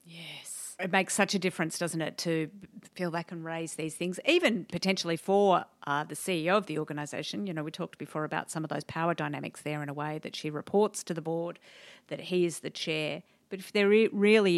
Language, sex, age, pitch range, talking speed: English, female, 50-69, 160-200 Hz, 225 wpm